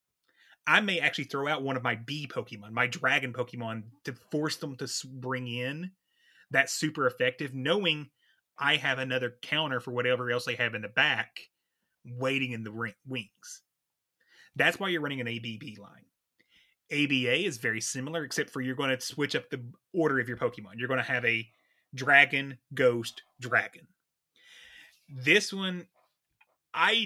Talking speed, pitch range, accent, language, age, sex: 160 wpm, 120-150 Hz, American, English, 30-49, male